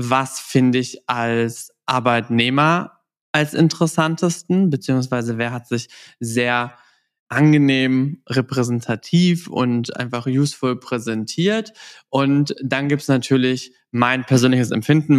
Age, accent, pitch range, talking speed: 20-39, German, 120-145 Hz, 105 wpm